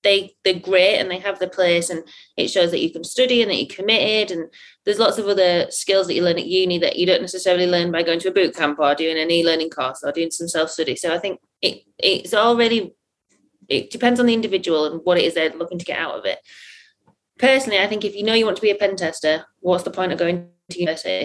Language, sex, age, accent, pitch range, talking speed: English, female, 20-39, British, 170-205 Hz, 260 wpm